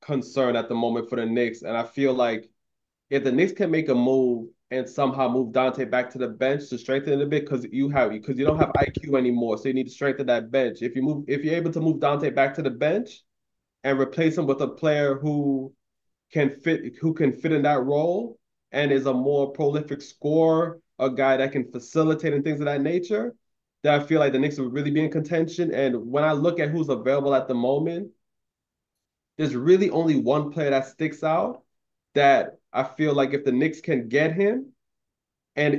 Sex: male